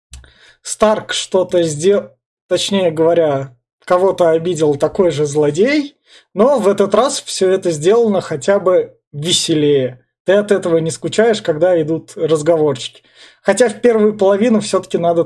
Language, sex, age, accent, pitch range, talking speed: Russian, male, 20-39, native, 160-195 Hz, 135 wpm